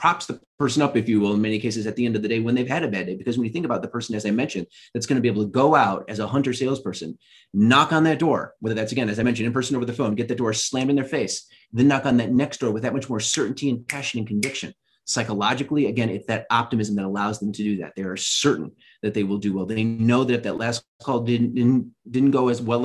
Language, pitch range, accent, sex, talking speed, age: English, 105-125 Hz, American, male, 300 wpm, 30-49